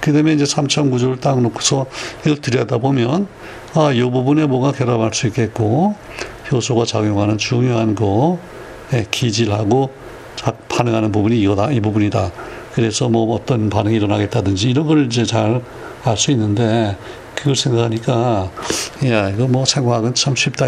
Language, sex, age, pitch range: Korean, male, 60-79, 110-135 Hz